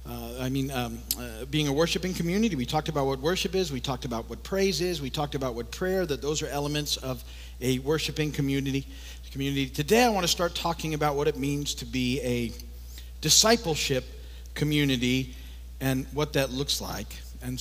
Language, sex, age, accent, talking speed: English, male, 50-69, American, 185 wpm